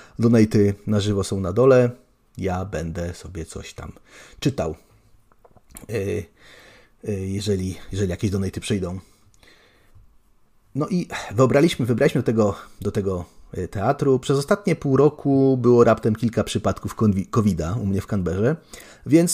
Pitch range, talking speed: 95-120 Hz, 125 wpm